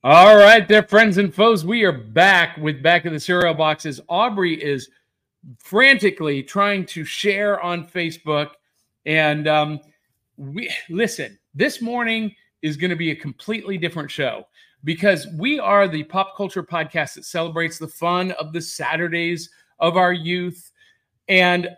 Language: English